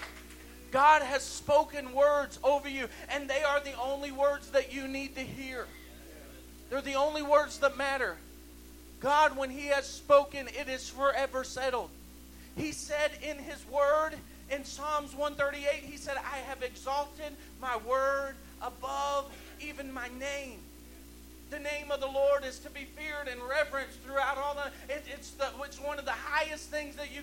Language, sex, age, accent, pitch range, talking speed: English, male, 40-59, American, 270-295 Hz, 170 wpm